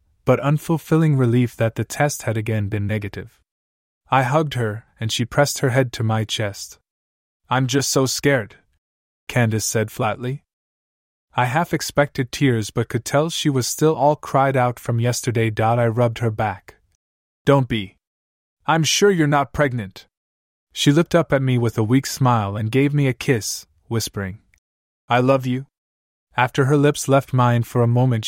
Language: English